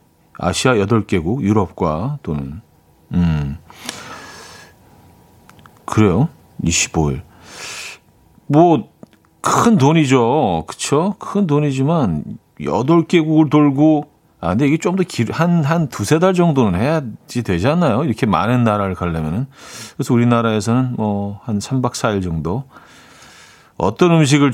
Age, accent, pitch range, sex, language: 40-59, native, 95-145 Hz, male, Korean